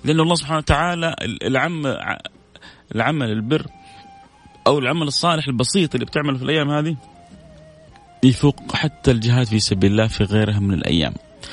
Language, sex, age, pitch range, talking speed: Arabic, male, 30-49, 115-155 Hz, 135 wpm